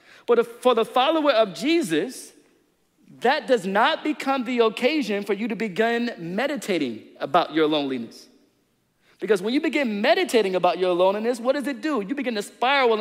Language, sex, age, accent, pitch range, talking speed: English, male, 40-59, American, 175-250 Hz, 165 wpm